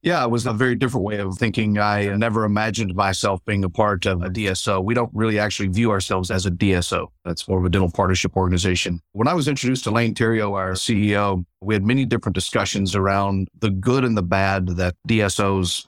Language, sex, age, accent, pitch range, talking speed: English, male, 40-59, American, 95-115 Hz, 215 wpm